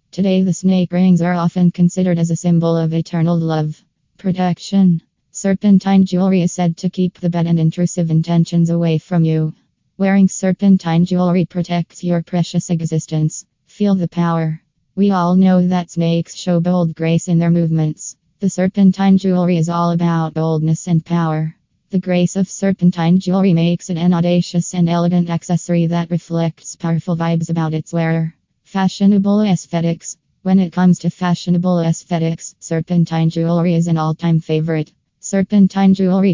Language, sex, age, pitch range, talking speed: English, female, 20-39, 165-185 Hz, 155 wpm